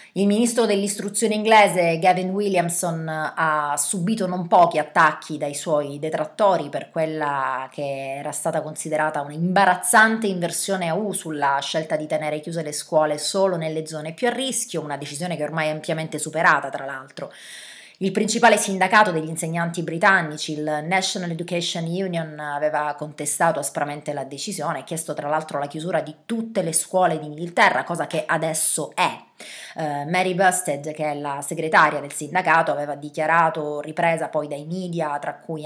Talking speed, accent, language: 155 wpm, native, Italian